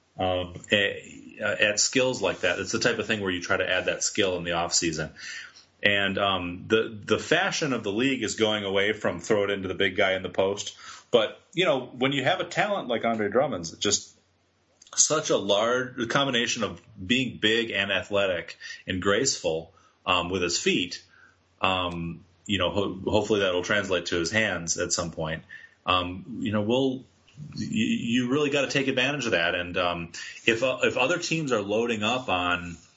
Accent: American